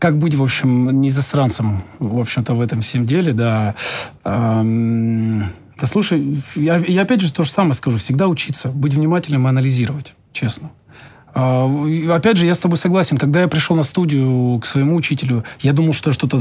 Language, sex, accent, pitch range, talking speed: Russian, male, native, 125-160 Hz, 180 wpm